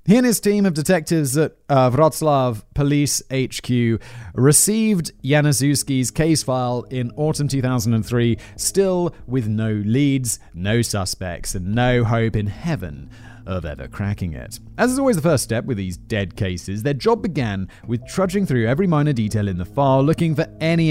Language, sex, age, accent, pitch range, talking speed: English, male, 30-49, British, 105-145 Hz, 165 wpm